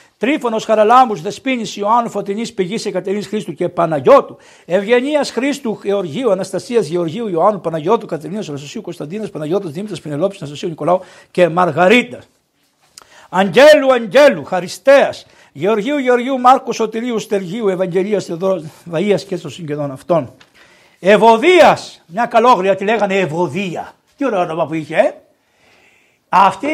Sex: male